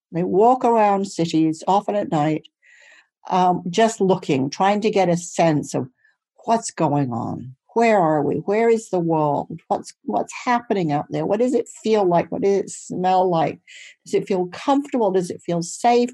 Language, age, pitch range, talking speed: English, 60-79, 170-230 Hz, 180 wpm